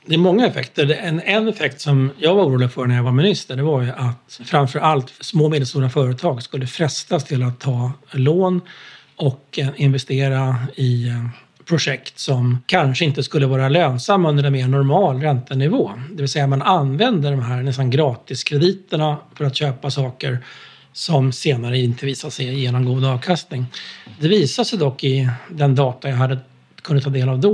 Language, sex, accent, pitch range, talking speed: Swedish, male, native, 130-150 Hz, 180 wpm